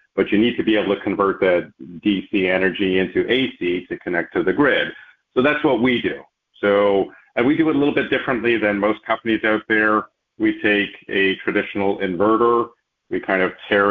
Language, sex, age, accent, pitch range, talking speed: English, male, 50-69, American, 95-115 Hz, 200 wpm